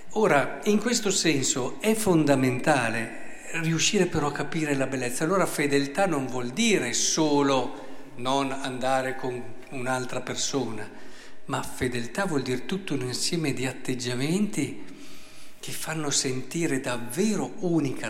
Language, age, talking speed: Italian, 50-69, 125 wpm